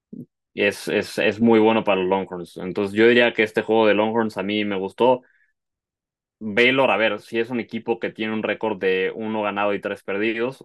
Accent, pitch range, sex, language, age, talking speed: Mexican, 100-115 Hz, male, Spanish, 20-39, 220 wpm